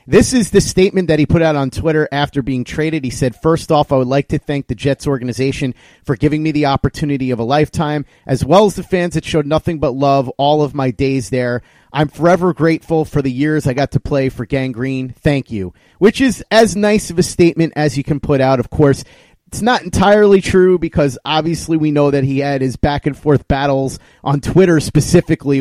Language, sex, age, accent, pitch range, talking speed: English, male, 30-49, American, 130-155 Hz, 220 wpm